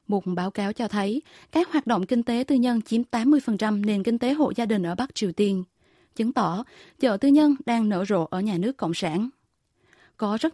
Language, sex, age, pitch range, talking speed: Vietnamese, female, 20-39, 200-255 Hz, 220 wpm